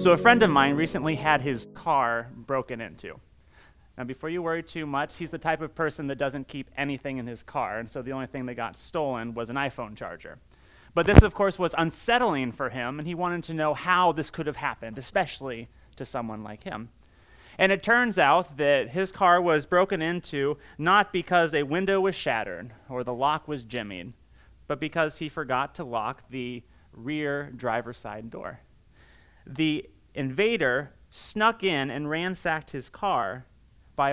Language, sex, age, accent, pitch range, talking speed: English, male, 30-49, American, 130-175 Hz, 185 wpm